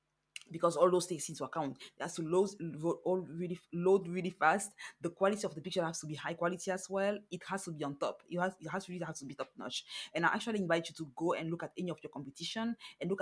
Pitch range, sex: 155-180 Hz, female